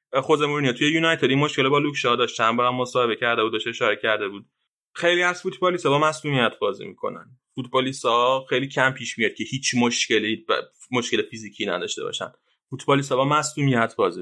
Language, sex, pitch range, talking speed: Persian, male, 120-145 Hz, 170 wpm